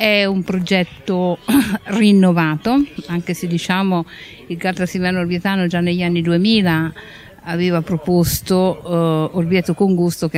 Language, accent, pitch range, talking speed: Italian, native, 160-195 Hz, 115 wpm